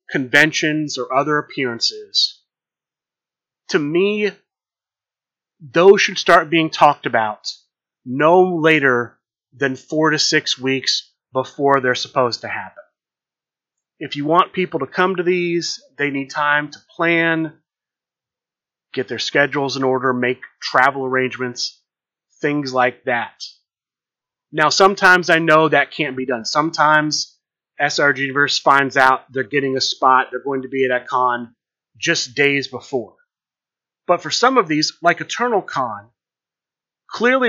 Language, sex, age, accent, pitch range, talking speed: English, male, 30-49, American, 135-175 Hz, 135 wpm